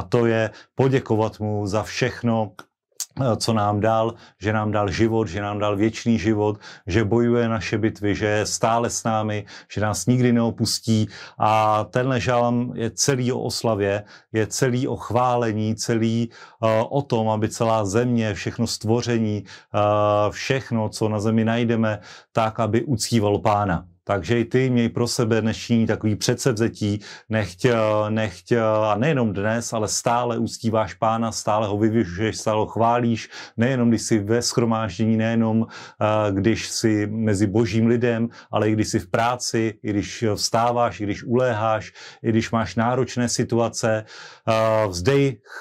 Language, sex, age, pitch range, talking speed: Slovak, male, 40-59, 105-115 Hz, 150 wpm